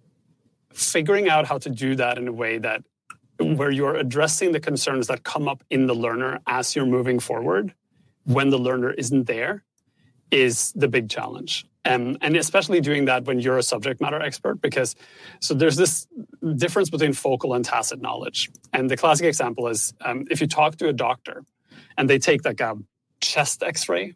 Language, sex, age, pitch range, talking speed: English, male, 30-49, 130-165 Hz, 185 wpm